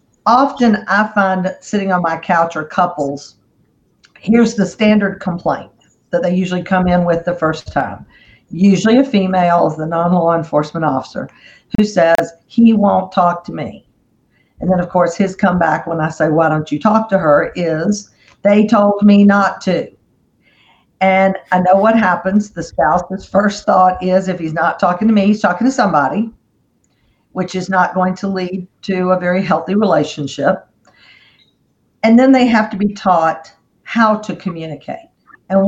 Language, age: English, 50-69